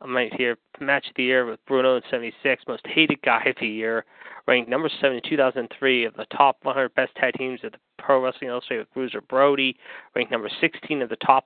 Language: English